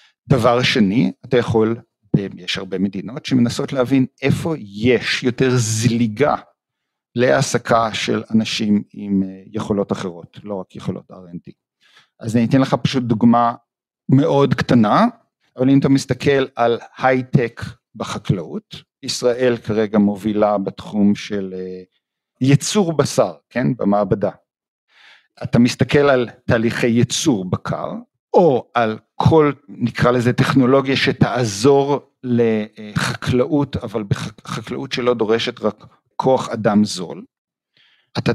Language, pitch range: Hebrew, 110-140 Hz